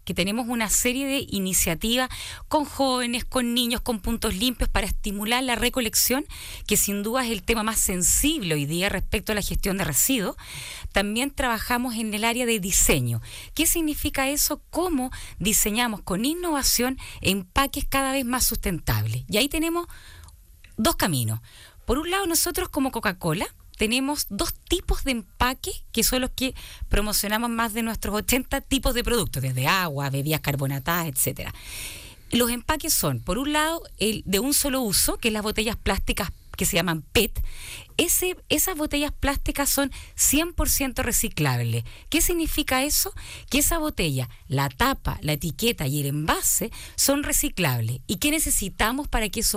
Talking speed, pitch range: 160 wpm, 175-275 Hz